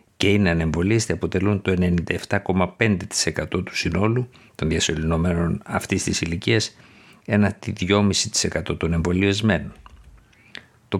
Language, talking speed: Greek, 100 wpm